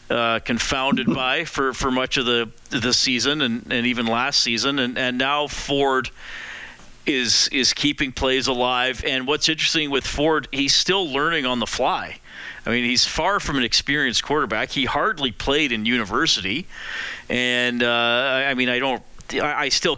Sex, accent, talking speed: male, American, 170 wpm